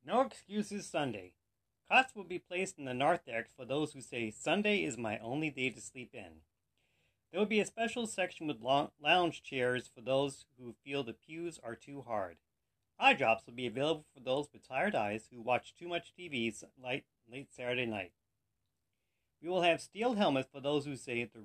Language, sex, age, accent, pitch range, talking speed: English, male, 40-59, American, 115-170 Hz, 190 wpm